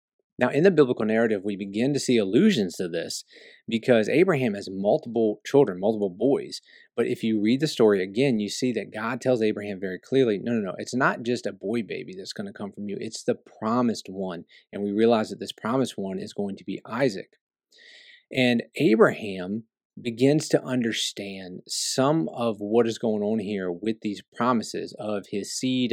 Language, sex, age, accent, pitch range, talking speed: English, male, 30-49, American, 100-125 Hz, 190 wpm